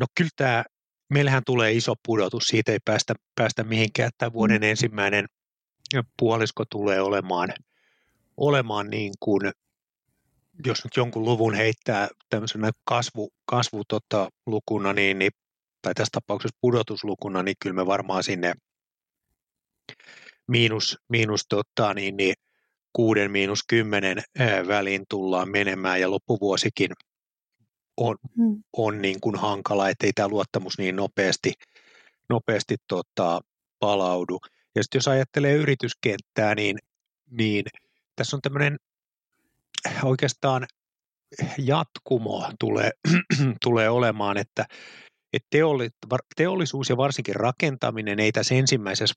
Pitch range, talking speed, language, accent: 100-125 Hz, 105 wpm, Finnish, native